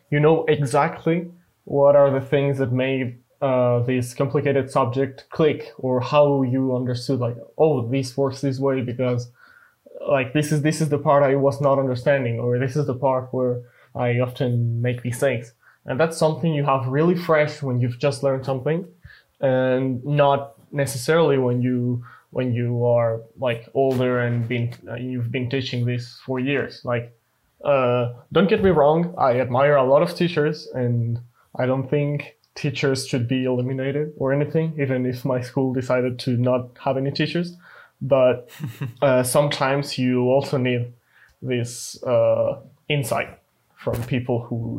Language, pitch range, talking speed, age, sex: English, 125-145 Hz, 165 wpm, 20-39, male